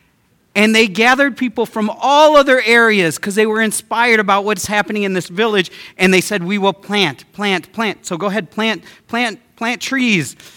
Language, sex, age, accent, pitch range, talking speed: English, male, 40-59, American, 145-210 Hz, 185 wpm